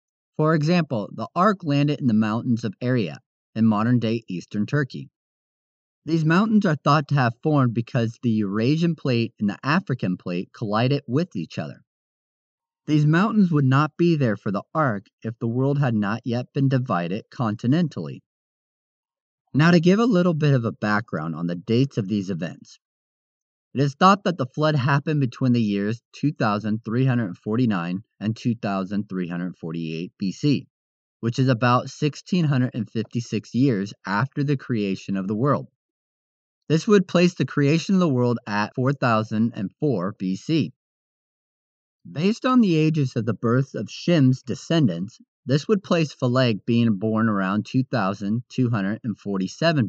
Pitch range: 110-150 Hz